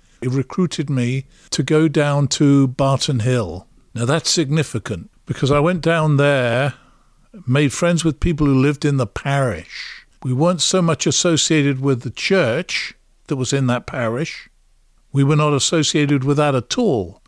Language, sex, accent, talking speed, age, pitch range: English, male, British, 165 wpm, 50-69, 130-155 Hz